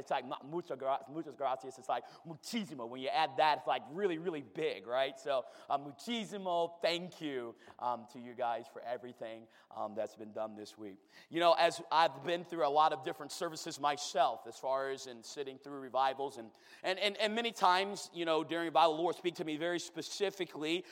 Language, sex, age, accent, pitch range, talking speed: English, male, 30-49, American, 165-220 Hz, 205 wpm